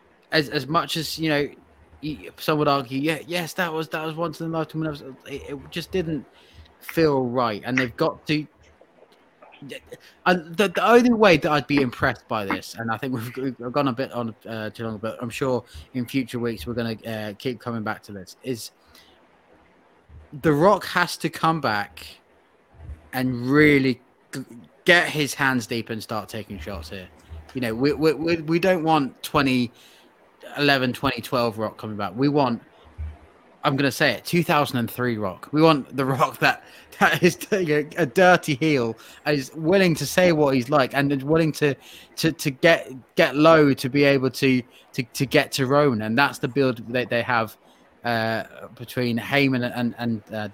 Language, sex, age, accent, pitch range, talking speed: English, male, 20-39, British, 115-150 Hz, 185 wpm